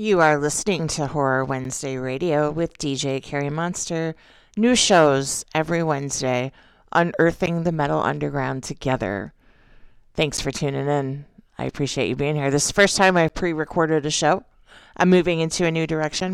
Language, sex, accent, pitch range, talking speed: English, female, American, 140-175 Hz, 160 wpm